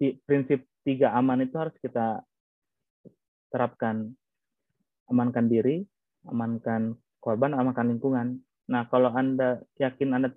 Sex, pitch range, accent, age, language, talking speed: male, 120-140 Hz, native, 20-39, Indonesian, 105 wpm